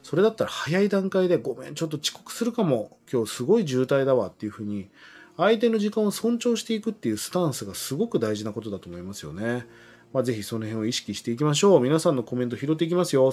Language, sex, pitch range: Japanese, male, 115-175 Hz